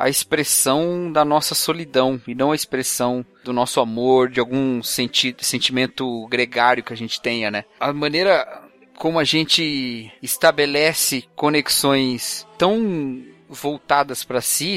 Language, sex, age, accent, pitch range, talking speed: Portuguese, male, 30-49, Brazilian, 125-165 Hz, 135 wpm